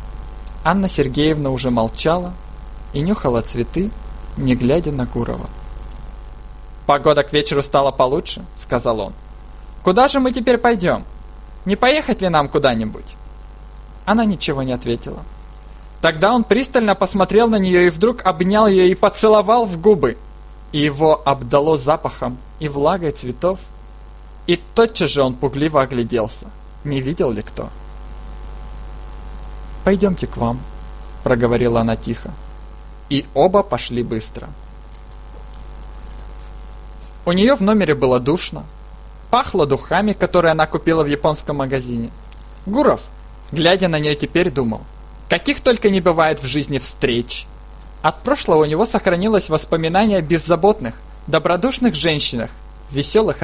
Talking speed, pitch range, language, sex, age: 125 wpm, 130-200 Hz, Russian, male, 20-39